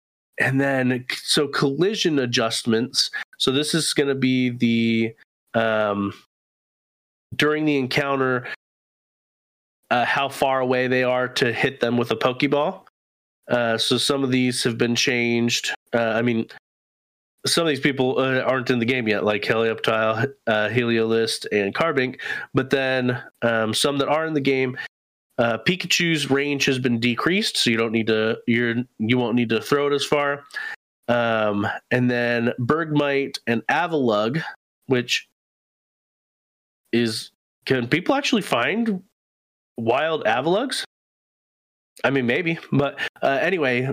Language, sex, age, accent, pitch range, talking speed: English, male, 30-49, American, 115-140 Hz, 140 wpm